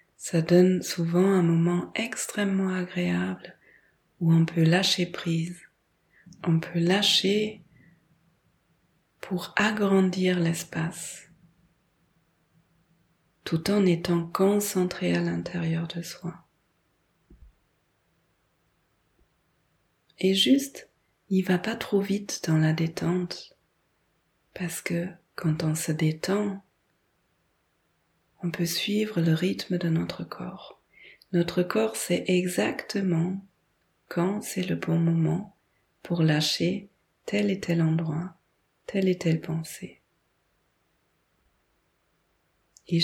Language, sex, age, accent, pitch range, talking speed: French, female, 30-49, French, 165-190 Hz, 100 wpm